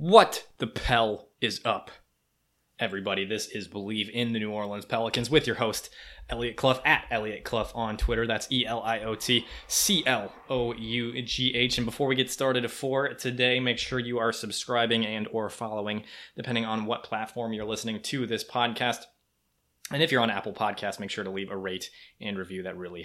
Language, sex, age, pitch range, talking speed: English, male, 20-39, 105-120 Hz, 170 wpm